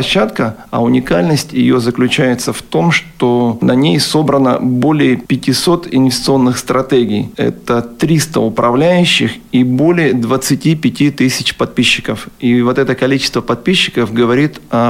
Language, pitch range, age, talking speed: Russian, 120-140 Hz, 40-59, 120 wpm